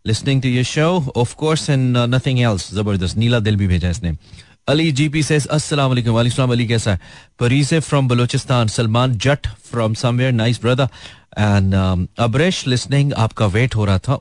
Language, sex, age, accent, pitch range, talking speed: Hindi, male, 30-49, native, 105-140 Hz, 175 wpm